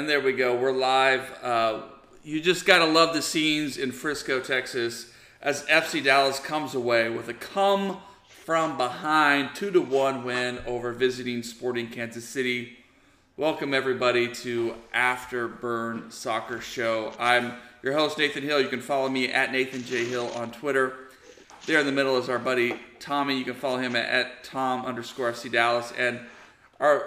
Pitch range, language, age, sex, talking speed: 120-155 Hz, English, 40-59, male, 170 wpm